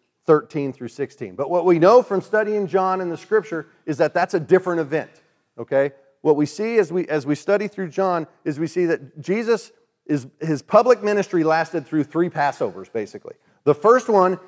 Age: 40-59